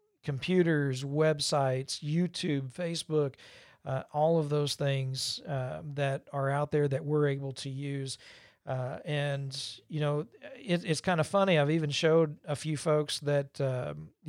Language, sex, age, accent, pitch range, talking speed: English, male, 40-59, American, 150-190 Hz, 150 wpm